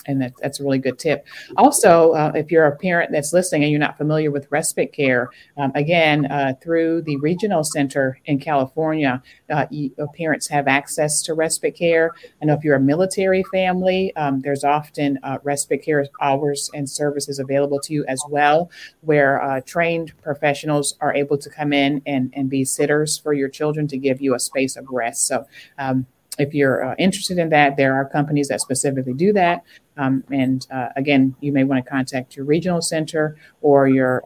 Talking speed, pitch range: 195 wpm, 135-160 Hz